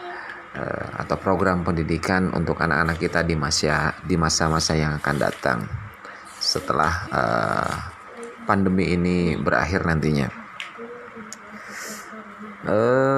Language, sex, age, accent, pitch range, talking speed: Indonesian, male, 30-49, native, 85-105 Hz, 90 wpm